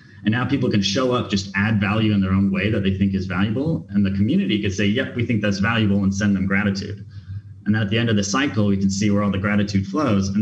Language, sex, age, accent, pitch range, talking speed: English, male, 30-49, American, 95-110 Hz, 280 wpm